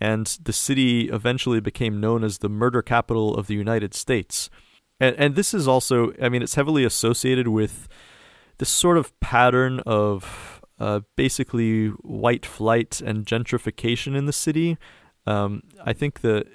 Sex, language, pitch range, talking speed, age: male, English, 110-130 Hz, 155 wpm, 30-49